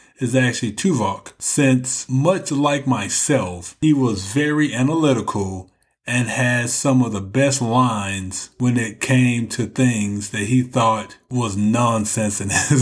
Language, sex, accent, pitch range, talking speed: English, male, American, 110-135 Hz, 140 wpm